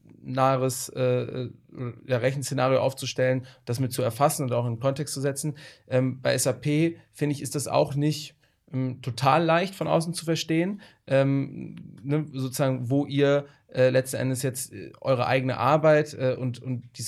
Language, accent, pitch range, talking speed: German, German, 120-140 Hz, 170 wpm